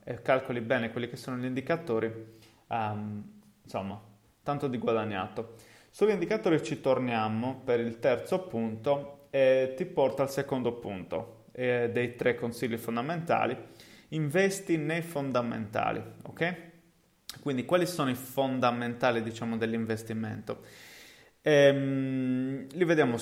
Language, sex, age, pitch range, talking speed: Italian, male, 30-49, 115-145 Hz, 120 wpm